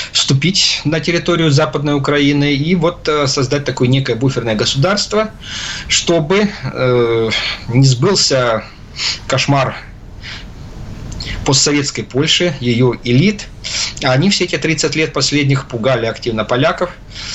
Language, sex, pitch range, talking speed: Russian, male, 115-150 Hz, 100 wpm